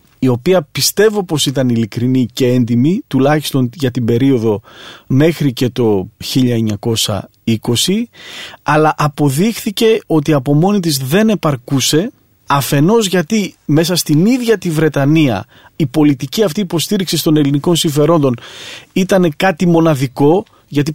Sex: male